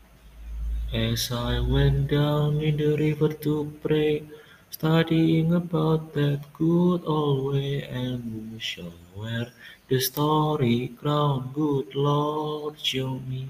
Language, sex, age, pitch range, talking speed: Indonesian, male, 30-49, 120-150 Hz, 115 wpm